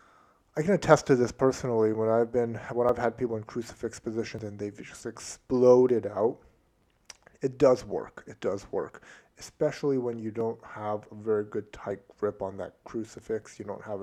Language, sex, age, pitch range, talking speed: English, male, 30-49, 105-125 Hz, 190 wpm